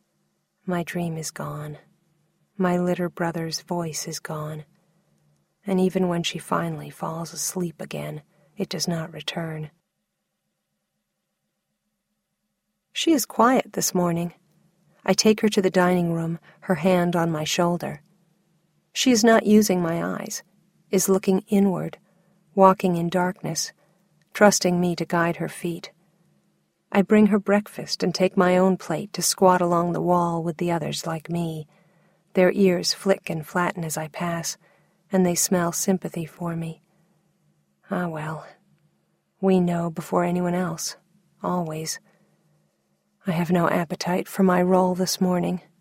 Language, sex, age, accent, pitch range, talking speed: English, female, 40-59, American, 170-190 Hz, 140 wpm